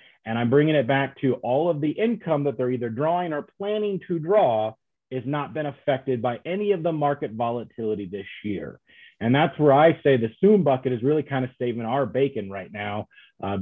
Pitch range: 120-160 Hz